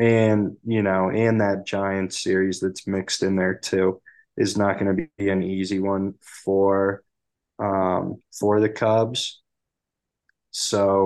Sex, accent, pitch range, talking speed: male, American, 95-105 Hz, 140 wpm